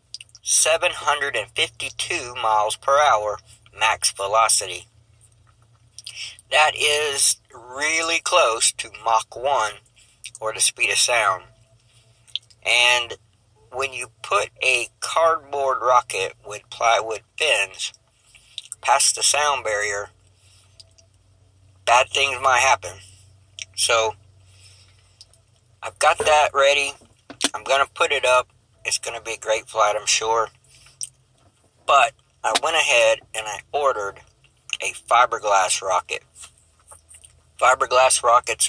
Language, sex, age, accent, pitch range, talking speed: English, male, 60-79, American, 95-125 Hz, 105 wpm